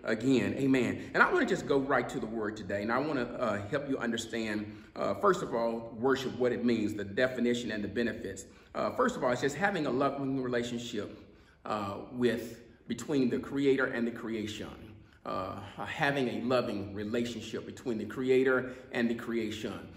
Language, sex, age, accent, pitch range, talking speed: English, male, 40-59, American, 110-140 Hz, 190 wpm